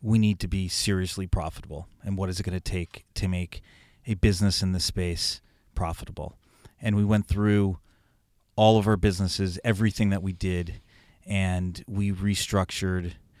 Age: 30-49